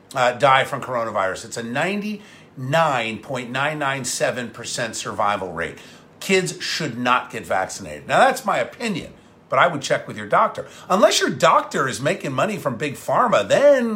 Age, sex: 50-69, male